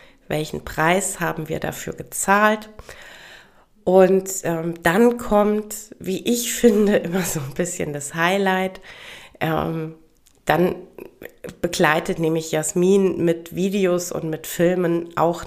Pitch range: 160-205 Hz